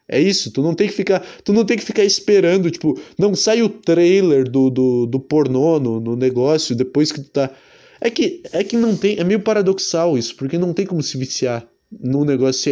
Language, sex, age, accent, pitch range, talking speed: Portuguese, male, 20-39, Brazilian, 140-195 Hz, 220 wpm